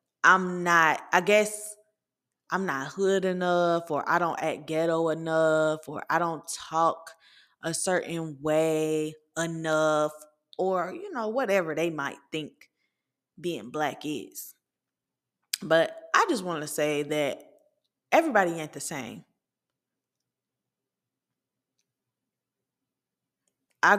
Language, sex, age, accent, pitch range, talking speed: English, female, 20-39, American, 155-200 Hz, 110 wpm